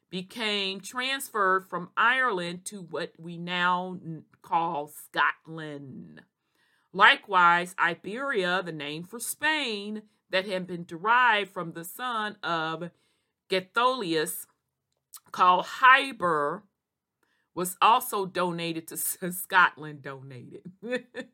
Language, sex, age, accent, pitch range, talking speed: English, female, 40-59, American, 180-240 Hz, 95 wpm